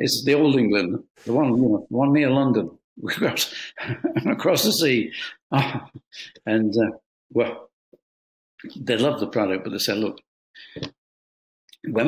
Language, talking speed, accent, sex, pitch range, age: English, 130 wpm, British, male, 95-135 Hz, 60-79